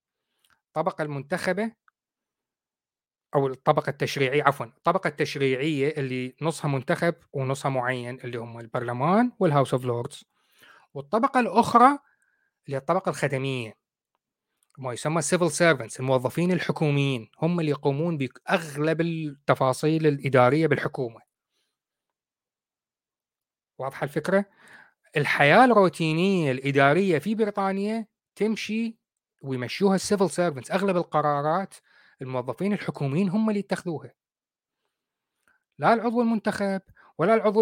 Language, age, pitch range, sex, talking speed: Arabic, 30-49, 140-195 Hz, male, 95 wpm